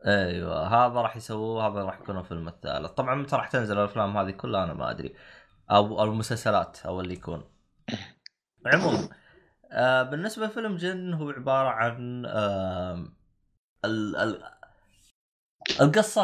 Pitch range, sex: 100-130 Hz, male